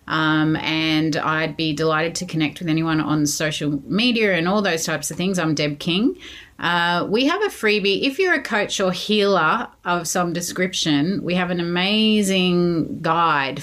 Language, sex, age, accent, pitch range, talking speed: English, female, 30-49, Australian, 155-190 Hz, 175 wpm